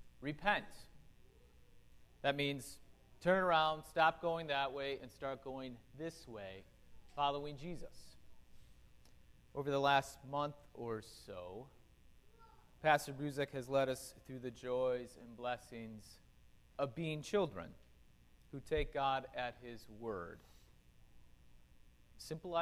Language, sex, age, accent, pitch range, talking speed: English, male, 30-49, American, 105-145 Hz, 110 wpm